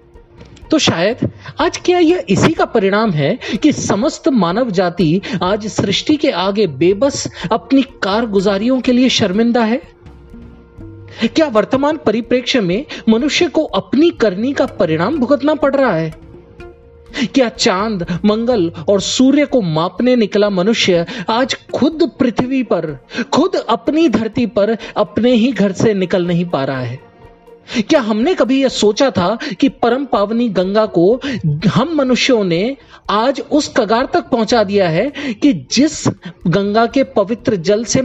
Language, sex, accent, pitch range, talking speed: Hindi, male, native, 195-265 Hz, 145 wpm